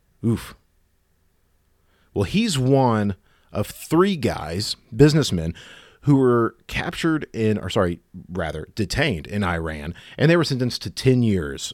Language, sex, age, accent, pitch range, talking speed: English, male, 40-59, American, 90-125 Hz, 130 wpm